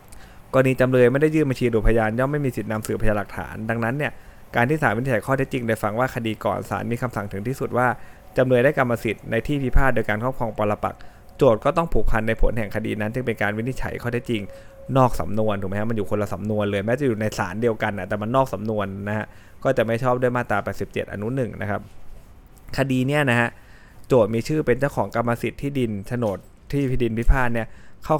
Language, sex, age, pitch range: Thai, male, 20-39, 105-130 Hz